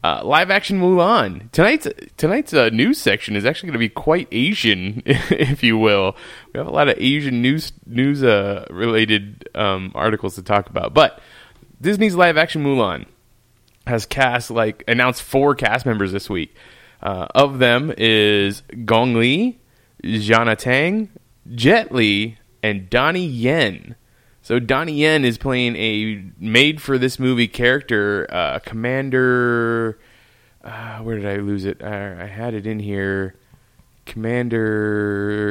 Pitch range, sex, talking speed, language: 105-130 Hz, male, 140 wpm, English